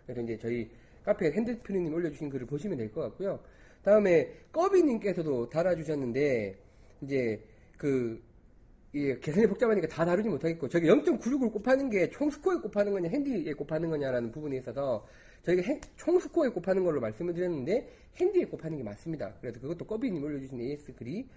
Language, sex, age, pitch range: Korean, male, 30-49, 135-215 Hz